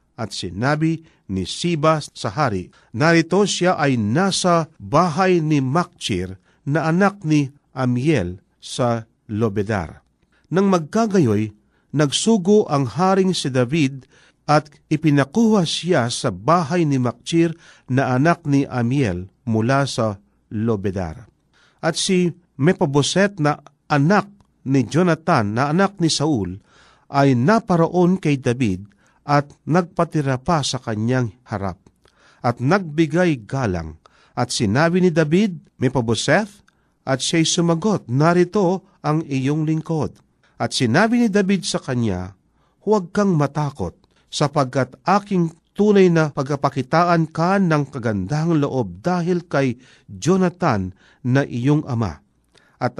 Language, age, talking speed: Filipino, 50-69, 115 wpm